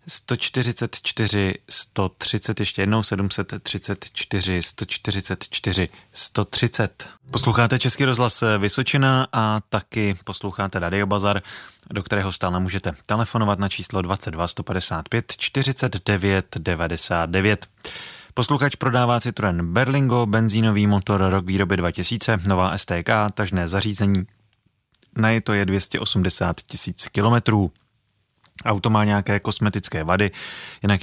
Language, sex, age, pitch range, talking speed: Czech, male, 30-49, 95-110 Hz, 100 wpm